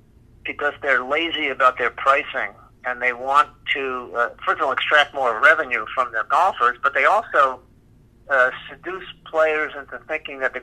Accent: American